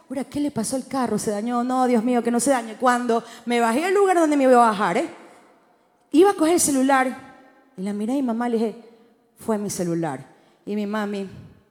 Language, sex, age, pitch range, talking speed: Spanish, female, 30-49, 220-315 Hz, 220 wpm